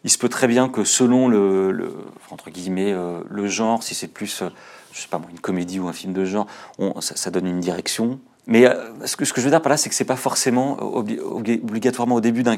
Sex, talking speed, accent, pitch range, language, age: male, 260 wpm, French, 95-120 Hz, French, 30-49